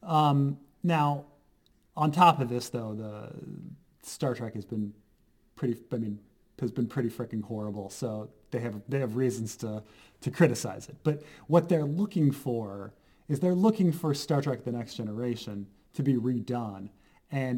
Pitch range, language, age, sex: 110-150 Hz, English, 30-49, male